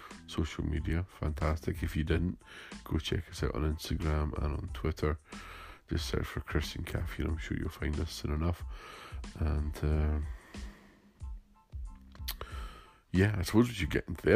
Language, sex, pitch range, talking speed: English, male, 75-85 Hz, 155 wpm